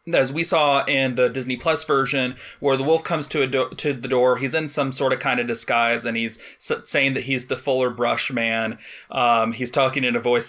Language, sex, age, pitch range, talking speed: English, male, 30-49, 125-155 Hz, 235 wpm